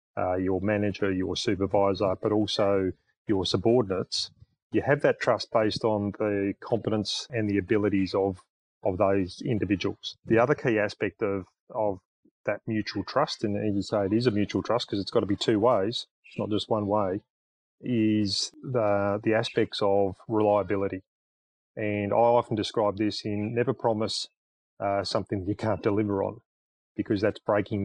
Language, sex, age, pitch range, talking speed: English, male, 30-49, 100-110 Hz, 165 wpm